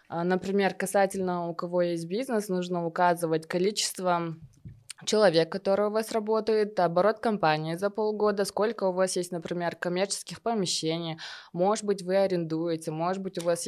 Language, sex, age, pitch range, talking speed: Russian, female, 20-39, 165-195 Hz, 145 wpm